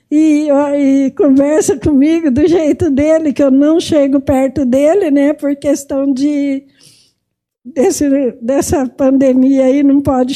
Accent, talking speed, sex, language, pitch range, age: Brazilian, 135 wpm, female, Portuguese, 290-345 Hz, 50-69